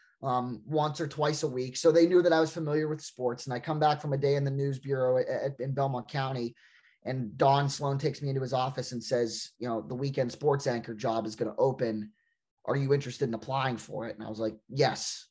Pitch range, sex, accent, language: 125-145 Hz, male, American, English